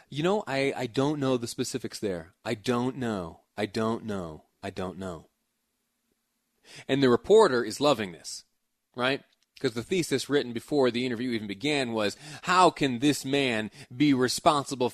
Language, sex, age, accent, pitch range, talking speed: English, male, 30-49, American, 110-140 Hz, 165 wpm